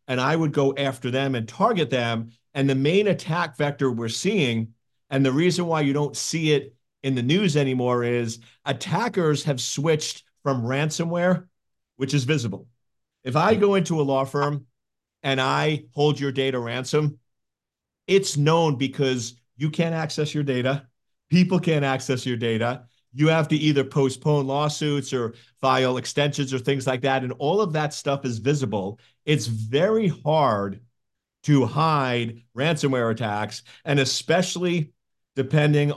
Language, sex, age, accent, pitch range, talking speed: English, male, 50-69, American, 120-150 Hz, 155 wpm